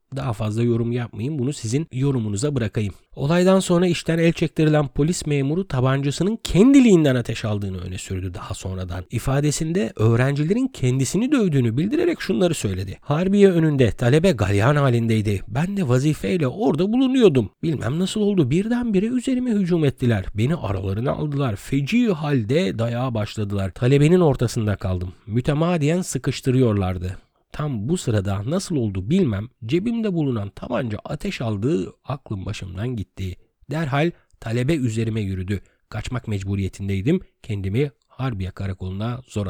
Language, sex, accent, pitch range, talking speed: Turkish, male, native, 105-155 Hz, 125 wpm